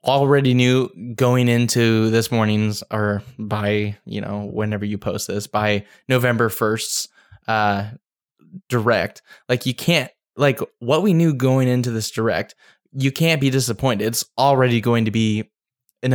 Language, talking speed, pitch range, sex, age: English, 150 wpm, 110-130 Hz, male, 20-39